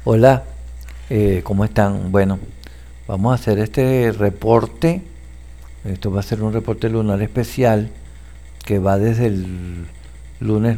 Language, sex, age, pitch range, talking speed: Spanish, male, 60-79, 85-125 Hz, 130 wpm